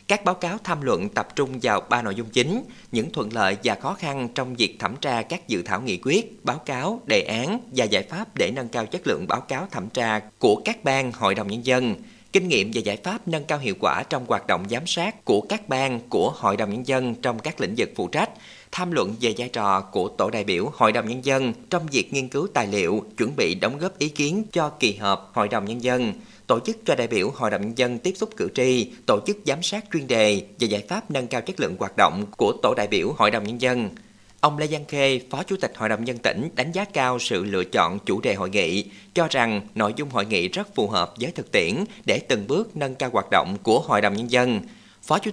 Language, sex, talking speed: Vietnamese, male, 255 wpm